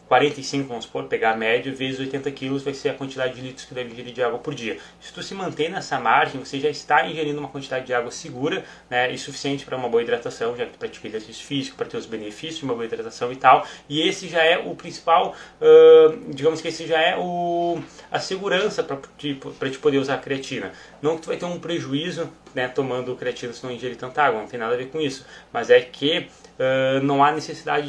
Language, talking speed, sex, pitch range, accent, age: Portuguese, 235 wpm, male, 125-155 Hz, Brazilian, 20-39